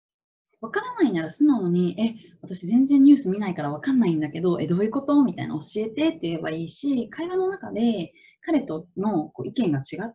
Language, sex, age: Japanese, female, 20-39